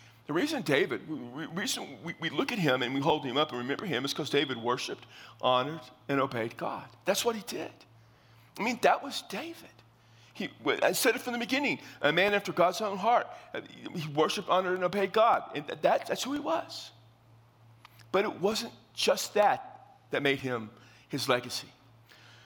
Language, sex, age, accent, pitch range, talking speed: English, male, 50-69, American, 120-175 Hz, 175 wpm